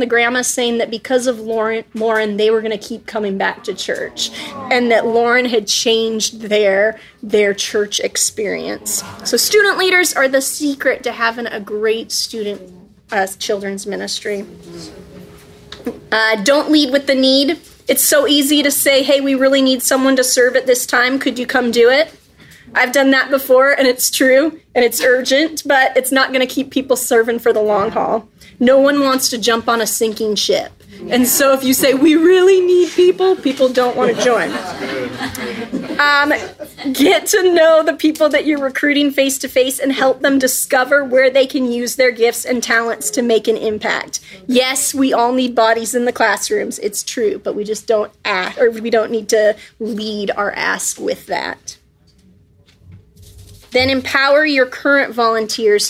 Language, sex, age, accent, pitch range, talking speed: English, female, 30-49, American, 225-280 Hz, 175 wpm